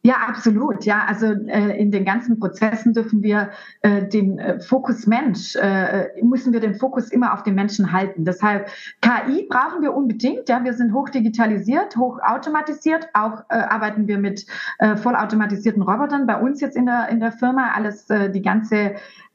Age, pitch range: 30-49, 210-255 Hz